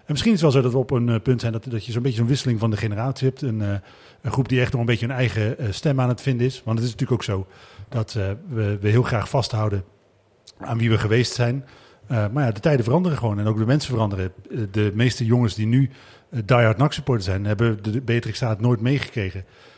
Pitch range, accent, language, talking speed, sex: 110-130 Hz, Dutch, Dutch, 250 wpm, male